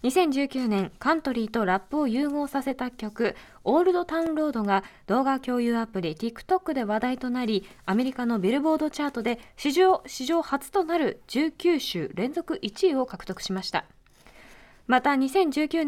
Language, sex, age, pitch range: Japanese, female, 20-39, 215-310 Hz